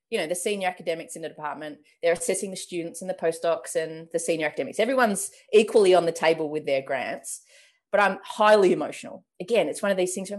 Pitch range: 180-290 Hz